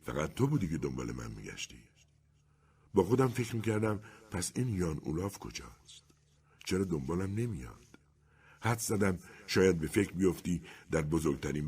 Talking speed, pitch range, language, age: 140 wpm, 75-110 Hz, Persian, 60-79